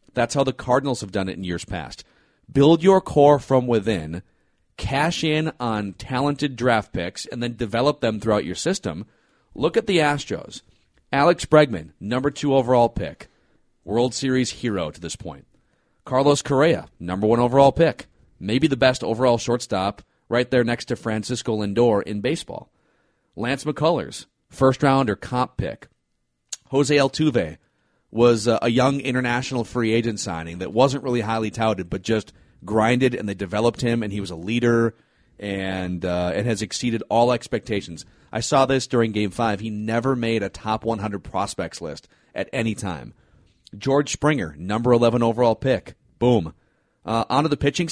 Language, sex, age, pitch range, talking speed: English, male, 40-59, 105-135 Hz, 165 wpm